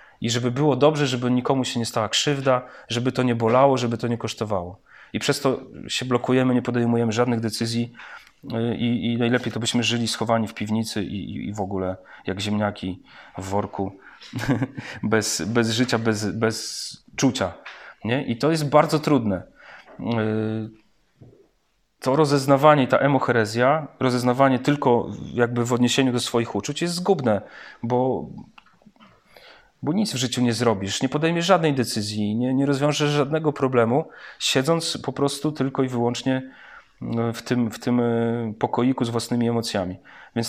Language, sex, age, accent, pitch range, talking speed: Polish, male, 40-59, native, 115-135 Hz, 150 wpm